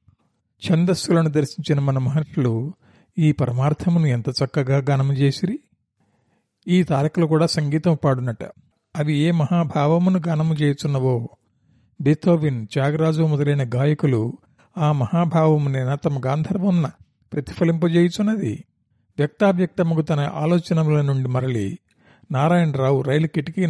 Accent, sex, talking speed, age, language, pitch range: native, male, 95 wpm, 50-69, Telugu, 130-165 Hz